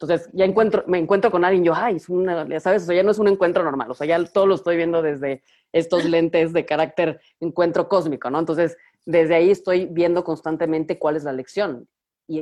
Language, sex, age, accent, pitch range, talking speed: Spanish, female, 30-49, Mexican, 160-195 Hz, 230 wpm